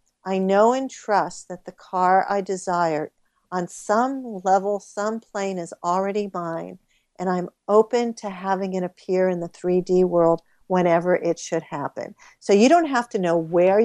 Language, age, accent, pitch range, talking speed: English, 50-69, American, 180-215 Hz, 170 wpm